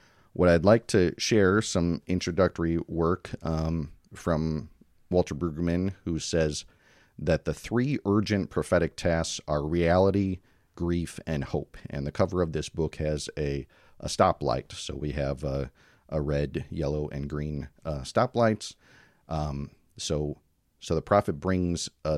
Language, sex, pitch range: English, male, 75-95 Hz